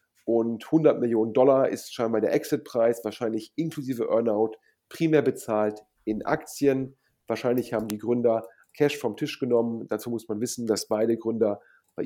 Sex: male